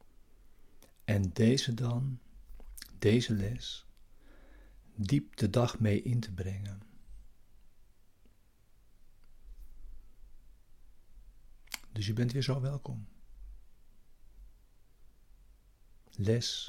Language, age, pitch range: Dutch, 60-79, 100-115 Hz